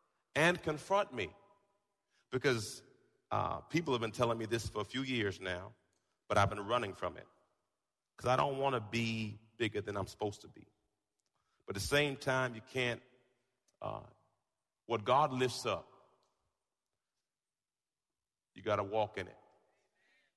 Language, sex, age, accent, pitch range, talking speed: English, male, 40-59, American, 110-135 Hz, 155 wpm